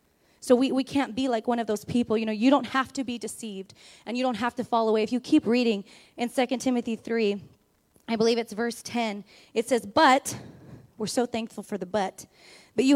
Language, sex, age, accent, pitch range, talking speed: English, female, 20-39, American, 225-275 Hz, 225 wpm